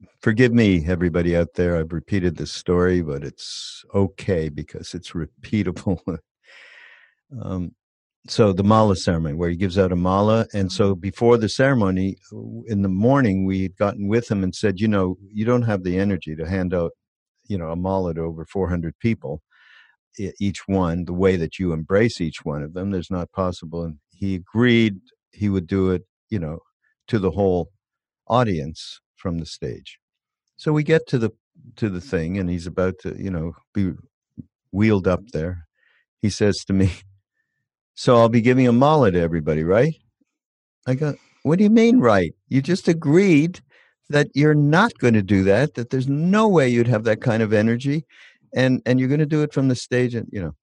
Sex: male